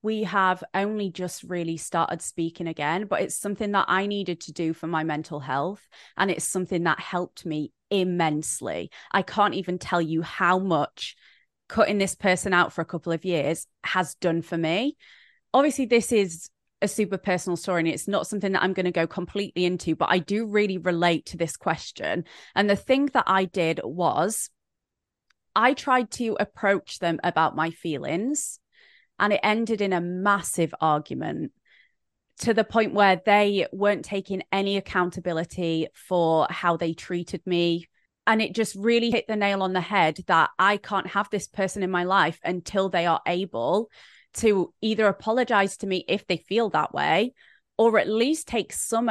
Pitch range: 175-205 Hz